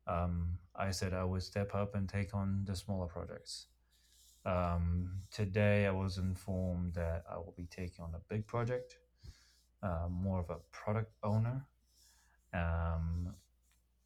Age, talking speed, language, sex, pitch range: 30-49, 145 wpm, English, male, 85-100 Hz